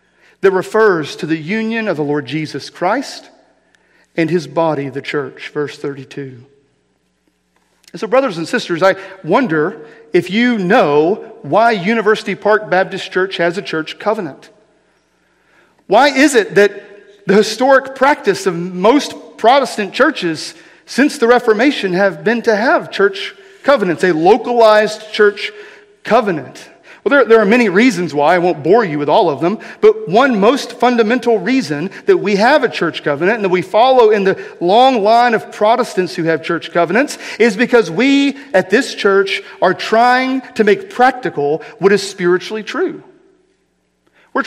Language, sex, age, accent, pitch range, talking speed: English, male, 40-59, American, 180-255 Hz, 155 wpm